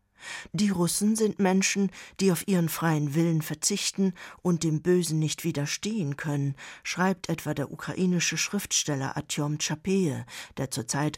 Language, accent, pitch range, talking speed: German, German, 150-185 Hz, 135 wpm